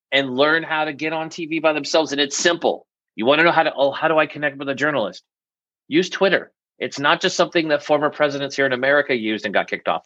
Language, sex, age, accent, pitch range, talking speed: English, male, 30-49, American, 120-160 Hz, 250 wpm